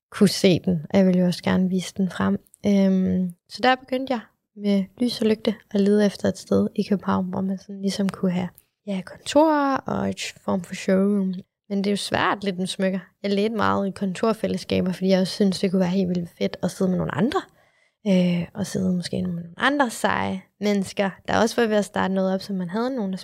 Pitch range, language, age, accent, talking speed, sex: 185-225 Hz, English, 20-39, Danish, 230 wpm, female